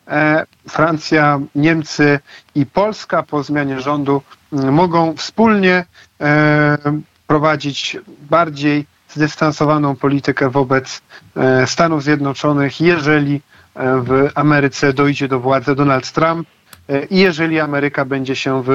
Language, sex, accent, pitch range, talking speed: Polish, male, native, 140-155 Hz, 95 wpm